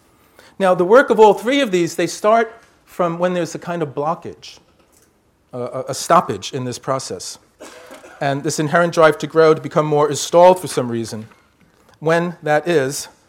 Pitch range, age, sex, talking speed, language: 135-180 Hz, 40-59, male, 180 wpm, English